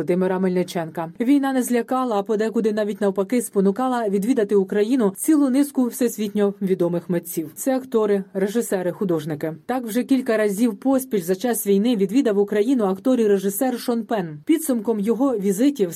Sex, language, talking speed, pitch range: female, Ukrainian, 145 wpm, 195-245 Hz